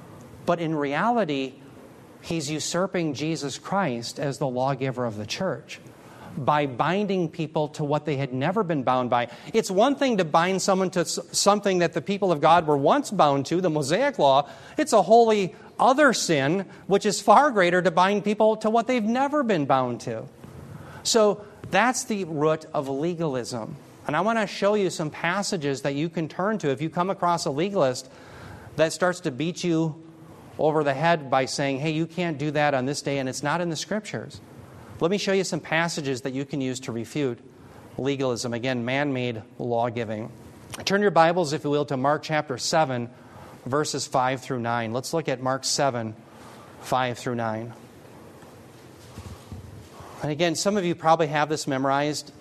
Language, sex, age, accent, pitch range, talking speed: English, male, 40-59, American, 130-175 Hz, 180 wpm